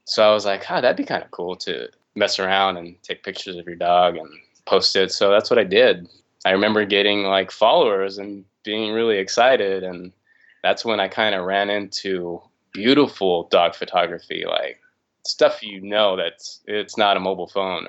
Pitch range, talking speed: 95-110 Hz, 195 wpm